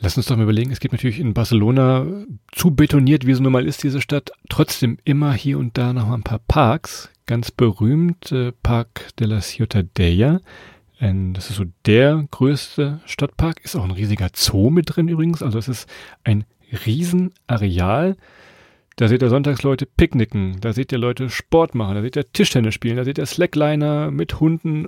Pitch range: 115-150 Hz